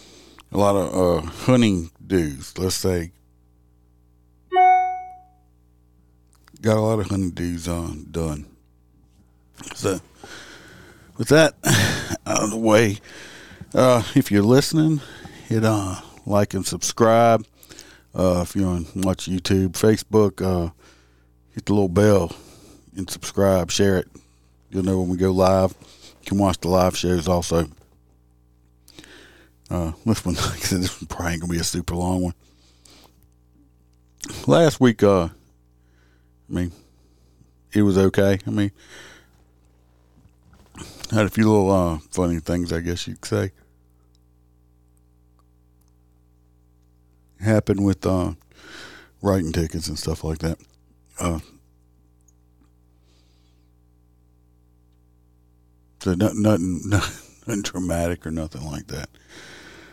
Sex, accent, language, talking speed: male, American, English, 120 wpm